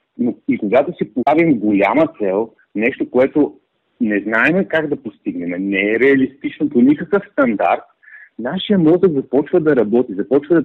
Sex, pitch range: male, 115-175 Hz